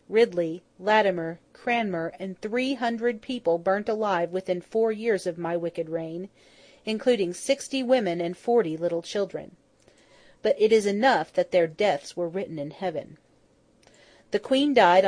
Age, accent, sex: 40-59, American, female